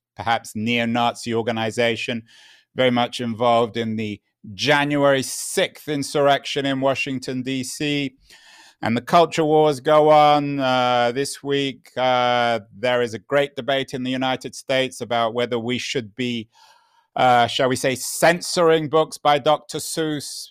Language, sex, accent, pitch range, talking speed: English, male, British, 125-155 Hz, 140 wpm